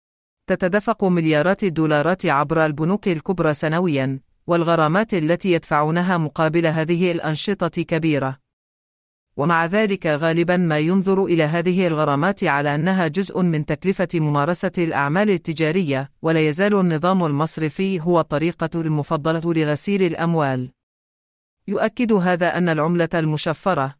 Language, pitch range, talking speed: English, 150-185 Hz, 110 wpm